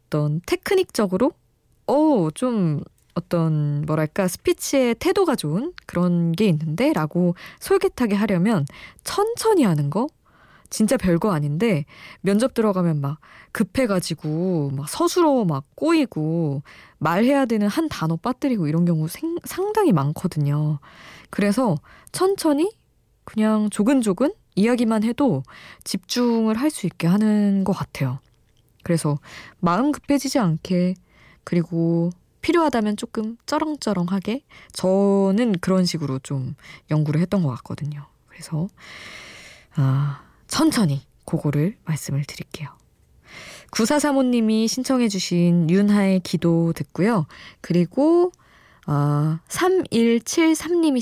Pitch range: 155-245 Hz